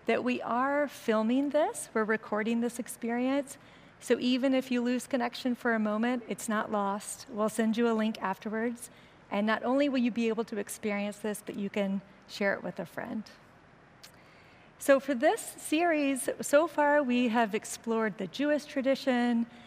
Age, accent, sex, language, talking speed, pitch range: 40-59, American, female, English, 175 wpm, 205-250 Hz